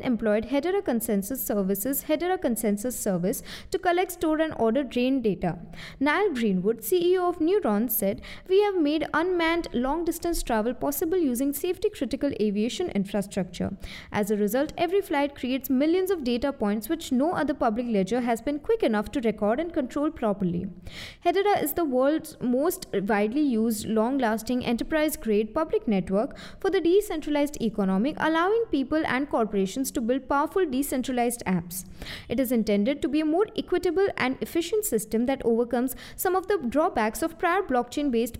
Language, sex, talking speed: English, female, 155 wpm